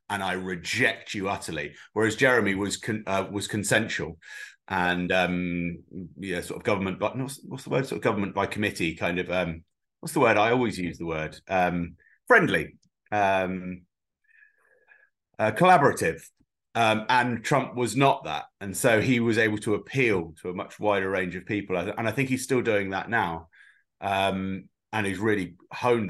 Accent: British